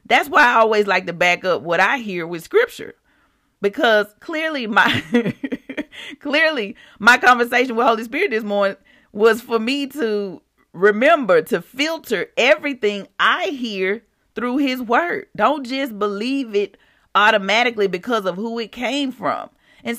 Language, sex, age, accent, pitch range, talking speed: English, female, 40-59, American, 195-275 Hz, 145 wpm